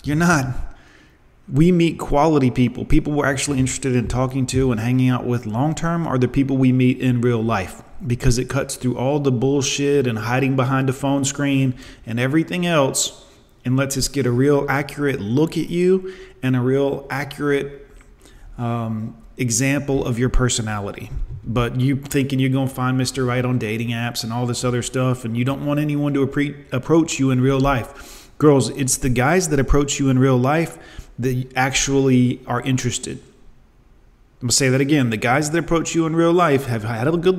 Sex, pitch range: male, 125-140 Hz